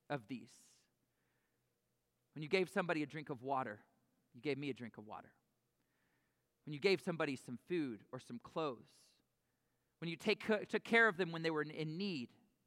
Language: English